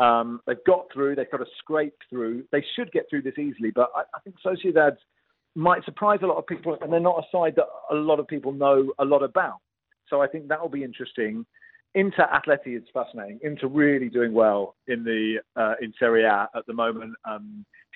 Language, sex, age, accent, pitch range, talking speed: English, male, 40-59, British, 125-170 Hz, 215 wpm